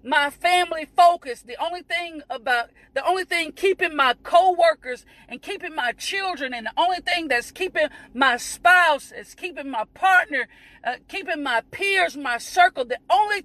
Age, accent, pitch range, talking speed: 40-59, American, 295-395 Hz, 165 wpm